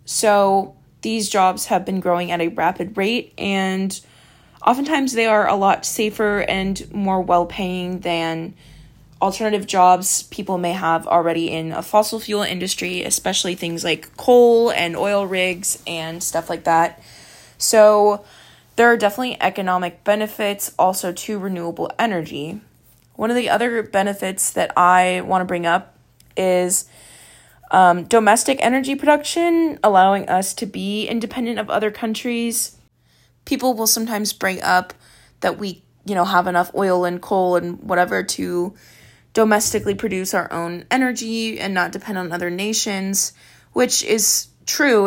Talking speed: 145 wpm